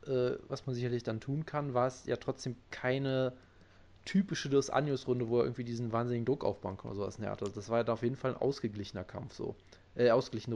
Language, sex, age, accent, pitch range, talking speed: German, male, 20-39, German, 105-130 Hz, 220 wpm